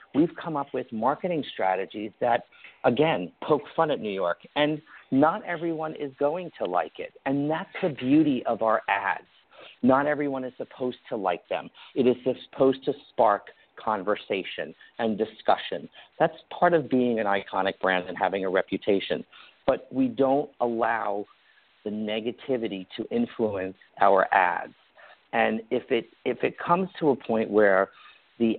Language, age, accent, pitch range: English, 50-69, American, 110-155 Hz